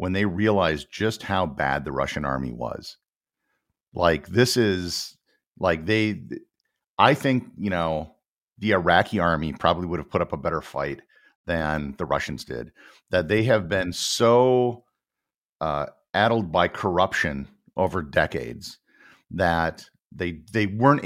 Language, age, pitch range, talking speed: English, 50-69, 80-105 Hz, 140 wpm